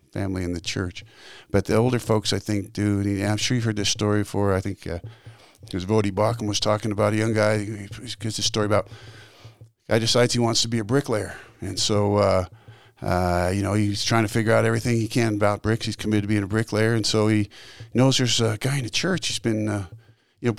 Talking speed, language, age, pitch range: 240 wpm, English, 50-69, 105-120 Hz